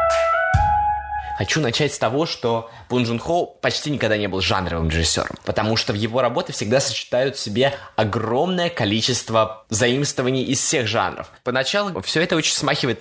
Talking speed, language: 155 wpm, Russian